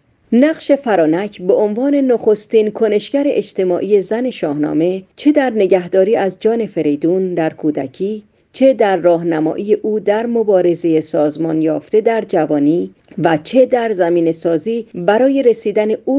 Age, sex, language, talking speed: 40-59, female, Persian, 130 wpm